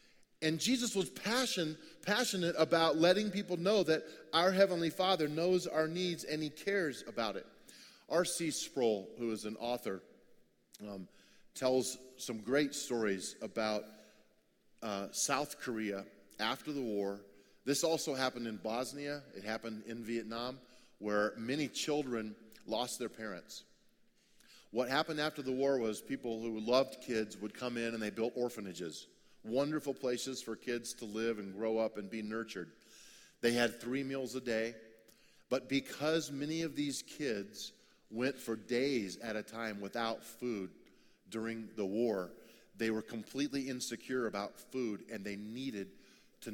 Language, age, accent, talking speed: English, 40-59, American, 150 wpm